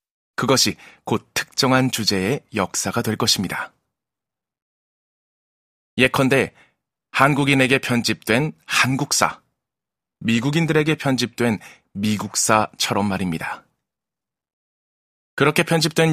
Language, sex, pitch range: Korean, male, 105-140 Hz